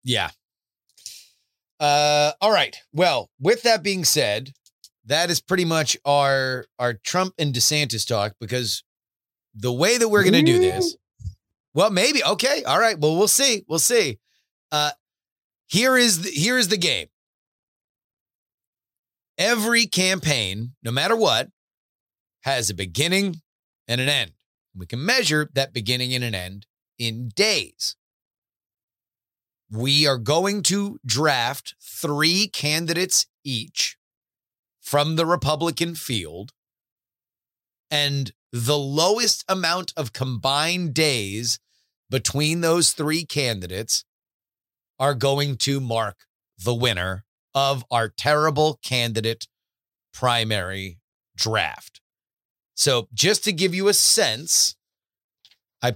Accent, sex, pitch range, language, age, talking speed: American, male, 115-165 Hz, English, 30-49, 120 wpm